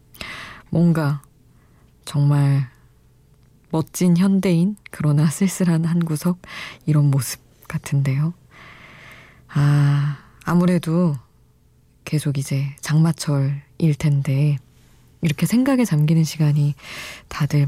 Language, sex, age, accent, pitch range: Korean, female, 20-39, native, 140-175 Hz